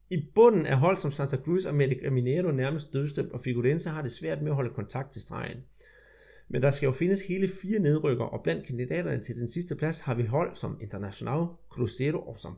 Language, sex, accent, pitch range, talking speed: Danish, male, native, 125-165 Hz, 225 wpm